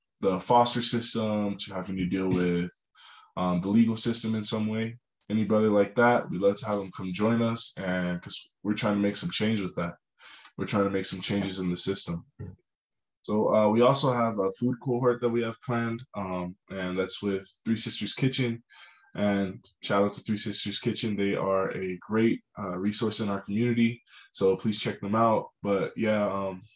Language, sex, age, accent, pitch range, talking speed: English, male, 20-39, American, 95-115 Hz, 195 wpm